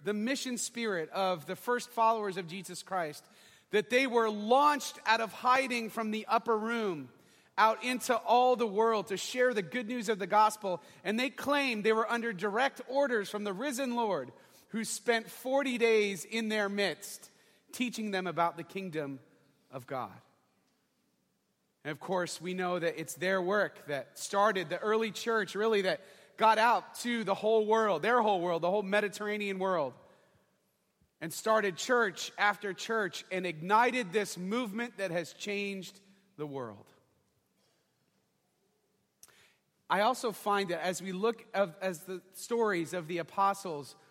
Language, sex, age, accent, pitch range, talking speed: English, male, 30-49, American, 185-230 Hz, 160 wpm